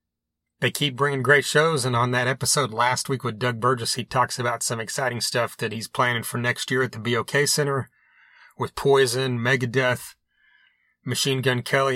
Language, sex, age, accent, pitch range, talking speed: English, male, 30-49, American, 125-145 Hz, 180 wpm